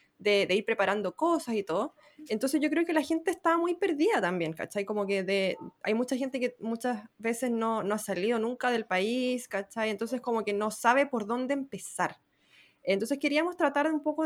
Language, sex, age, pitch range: Spanish, female, 20-39, 185-245 Hz